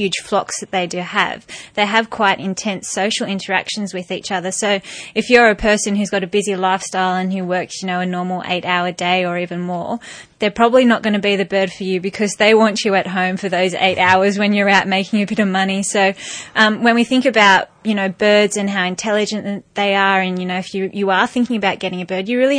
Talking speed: 250 wpm